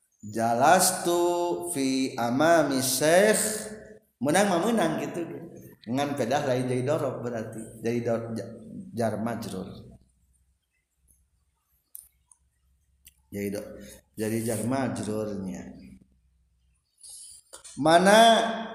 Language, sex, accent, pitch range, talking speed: Indonesian, male, native, 115-170 Hz, 50 wpm